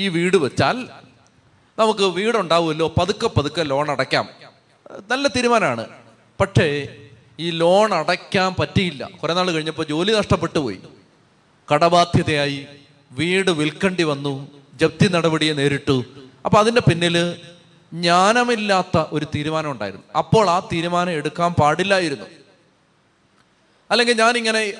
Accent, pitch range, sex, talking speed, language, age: native, 155-195 Hz, male, 105 wpm, Malayalam, 30-49